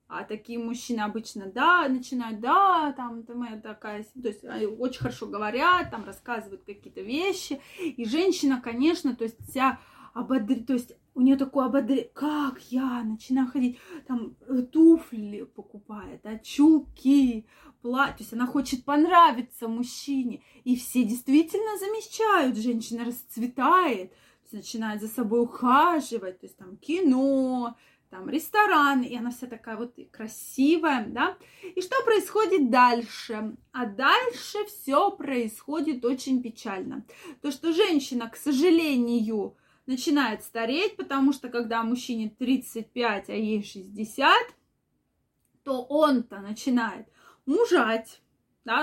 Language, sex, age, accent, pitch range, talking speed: Russian, female, 20-39, native, 230-295 Hz, 125 wpm